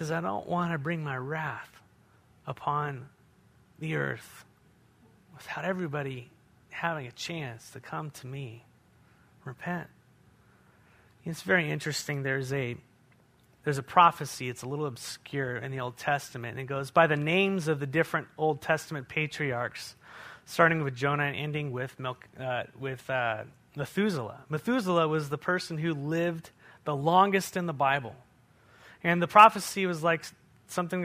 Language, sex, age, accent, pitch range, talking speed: English, male, 30-49, American, 135-170 Hz, 150 wpm